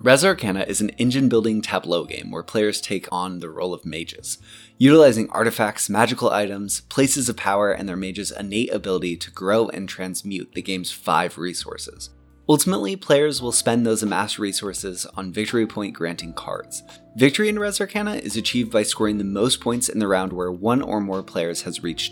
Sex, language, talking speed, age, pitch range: male, English, 180 wpm, 20-39, 95-130 Hz